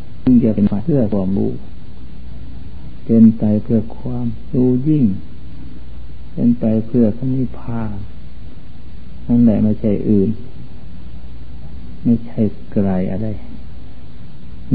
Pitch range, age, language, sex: 70-115 Hz, 60-79, Thai, male